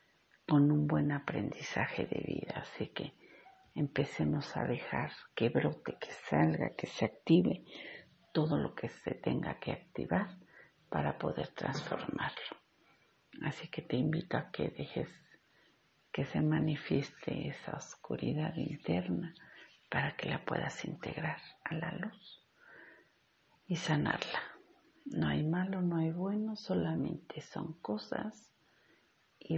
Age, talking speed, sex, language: 50-69, 125 wpm, female, English